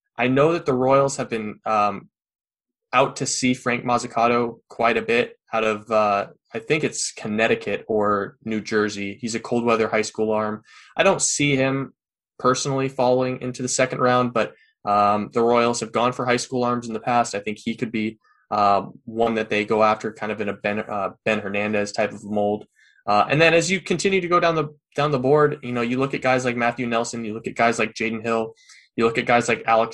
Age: 20-39